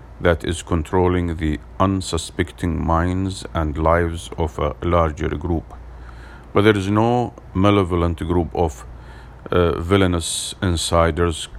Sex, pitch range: male, 80-95 Hz